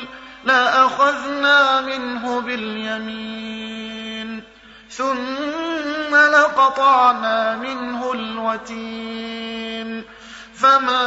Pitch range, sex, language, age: 235-280 Hz, male, Arabic, 30-49